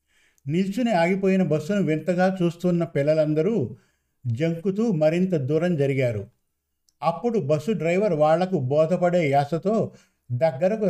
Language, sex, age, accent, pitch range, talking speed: Telugu, male, 50-69, native, 145-180 Hz, 95 wpm